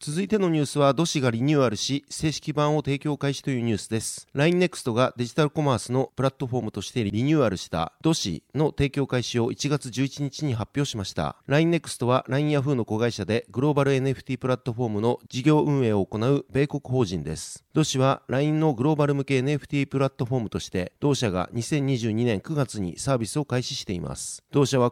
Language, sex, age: Japanese, male, 40-59